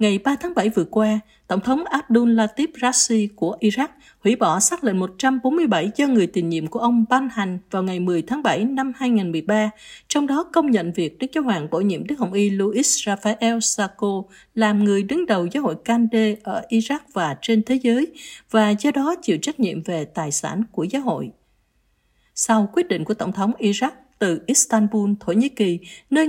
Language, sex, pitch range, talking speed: Vietnamese, female, 195-260 Hz, 200 wpm